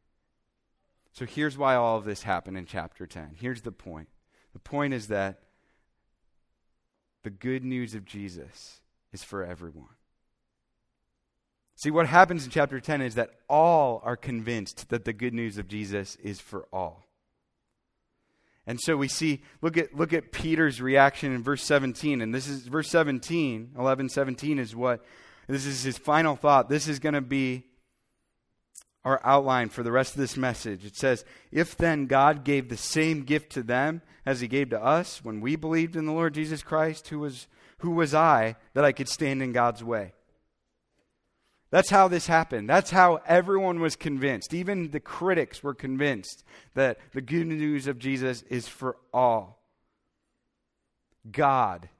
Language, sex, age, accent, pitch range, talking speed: English, male, 30-49, American, 115-150 Hz, 165 wpm